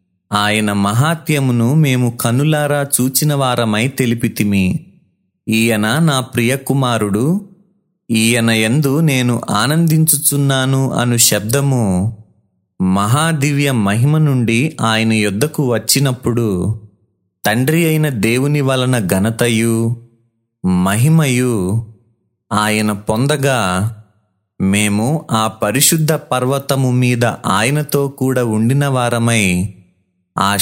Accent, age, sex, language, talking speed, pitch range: native, 30-49, male, Telugu, 75 wpm, 105-140 Hz